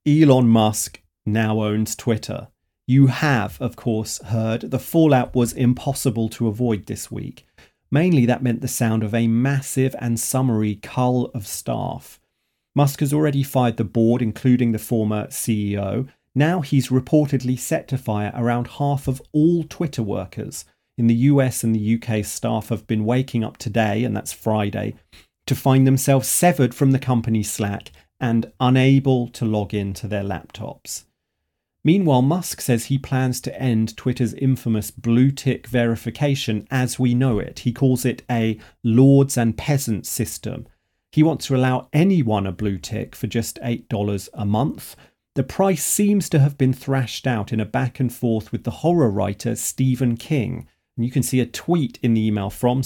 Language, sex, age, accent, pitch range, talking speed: English, male, 40-59, British, 110-135 Hz, 170 wpm